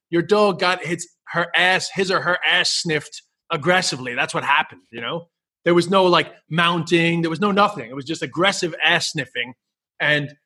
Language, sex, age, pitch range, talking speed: English, male, 30-49, 135-175 Hz, 190 wpm